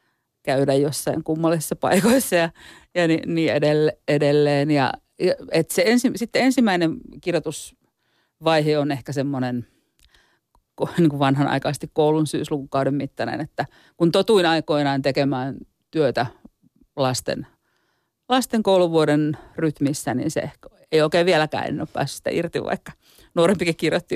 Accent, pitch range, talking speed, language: native, 150-185 Hz, 120 wpm, Finnish